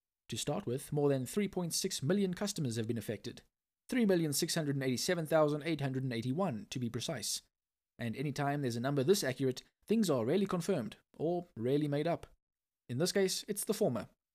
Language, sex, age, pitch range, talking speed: English, male, 20-39, 120-165 Hz, 150 wpm